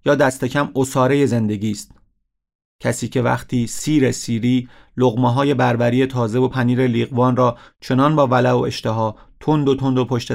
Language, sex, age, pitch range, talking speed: Persian, male, 40-59, 115-140 Hz, 160 wpm